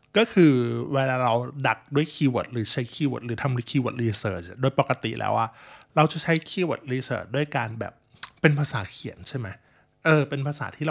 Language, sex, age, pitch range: Thai, male, 20-39, 115-145 Hz